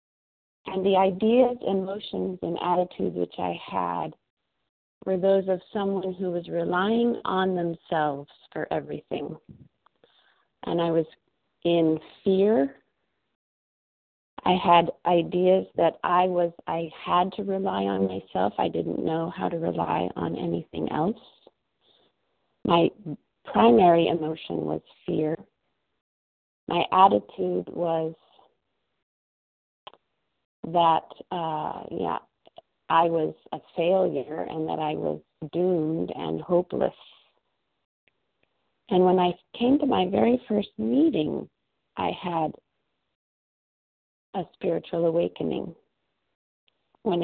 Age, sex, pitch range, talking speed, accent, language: 40-59, female, 155-190 Hz, 105 wpm, American, English